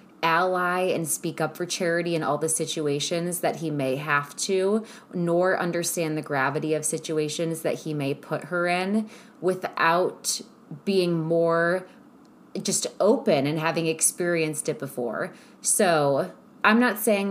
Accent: American